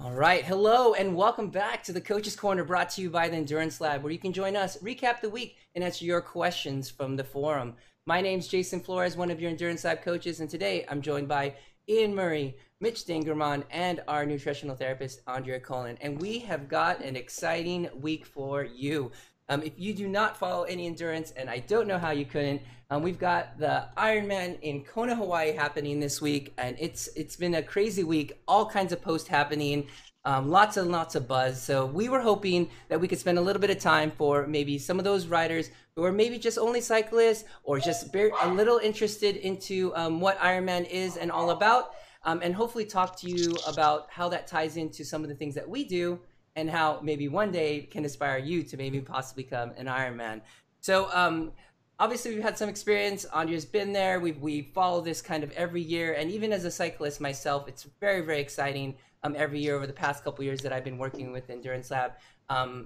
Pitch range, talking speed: 145-185 Hz, 215 wpm